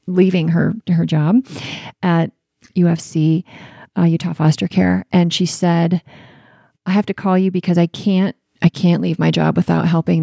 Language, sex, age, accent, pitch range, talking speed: English, female, 30-49, American, 160-185 Hz, 165 wpm